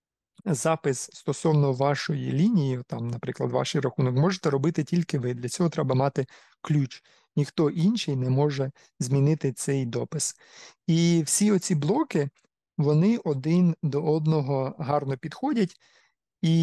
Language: Ukrainian